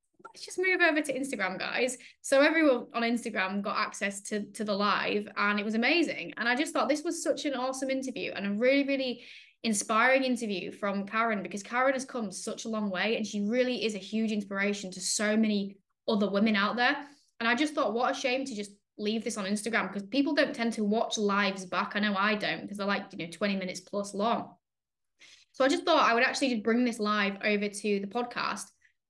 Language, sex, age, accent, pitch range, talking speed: English, female, 10-29, British, 205-255 Hz, 225 wpm